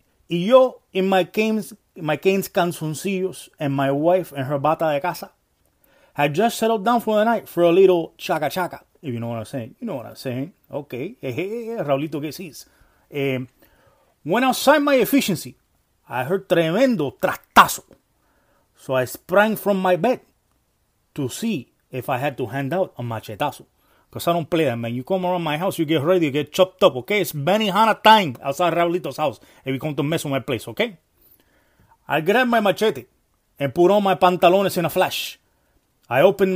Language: English